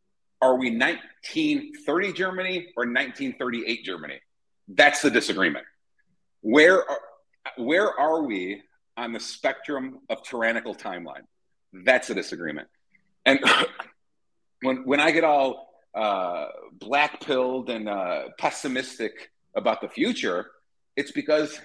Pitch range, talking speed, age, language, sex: 140-225 Hz, 110 wpm, 40-59, English, male